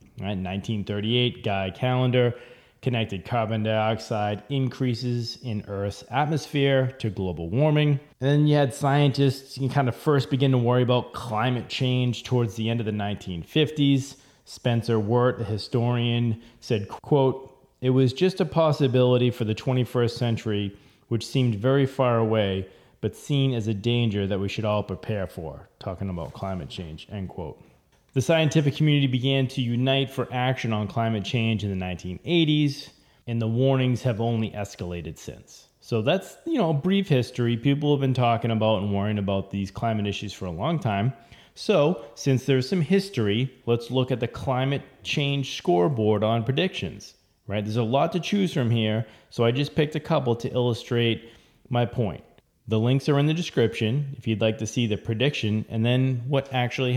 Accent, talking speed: American, 175 wpm